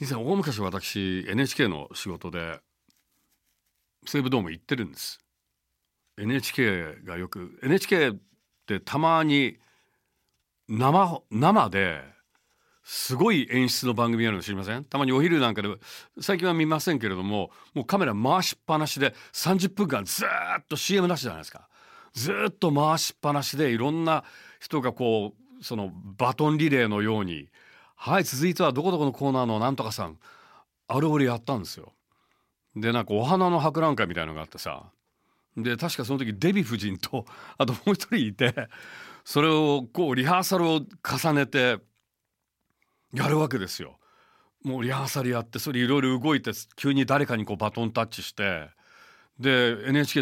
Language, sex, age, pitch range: Japanese, male, 40-59, 110-155 Hz